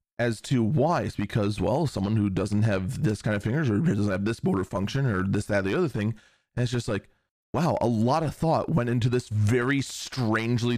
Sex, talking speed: male, 230 wpm